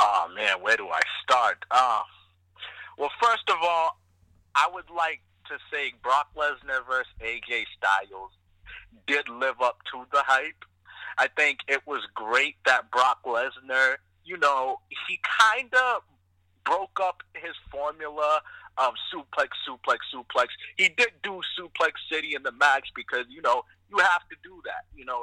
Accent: American